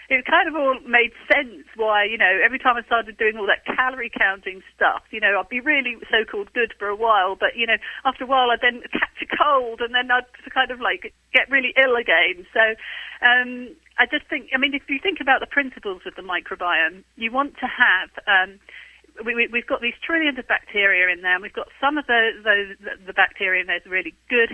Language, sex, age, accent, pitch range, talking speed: English, female, 40-59, British, 200-255 Hz, 230 wpm